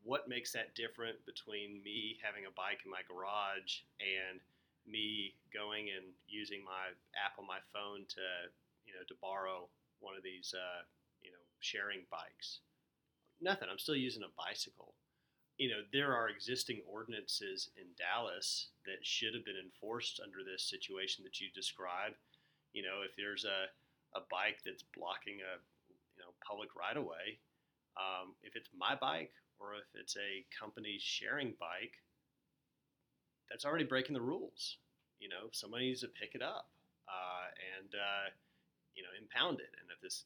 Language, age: English, 30-49